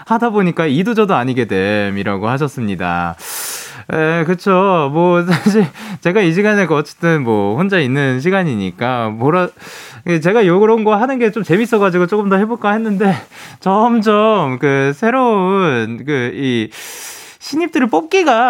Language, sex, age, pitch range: Korean, male, 20-39, 135-225 Hz